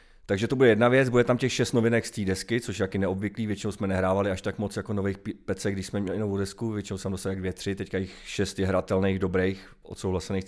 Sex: male